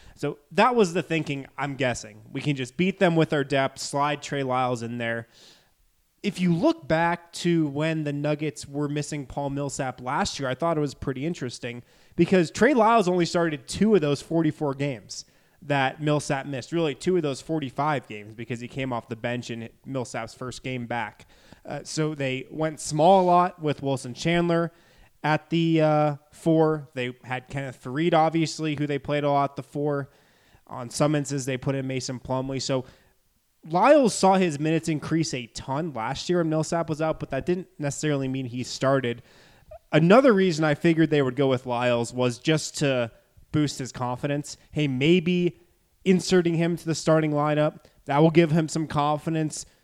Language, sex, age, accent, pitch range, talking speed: English, male, 20-39, American, 130-160 Hz, 185 wpm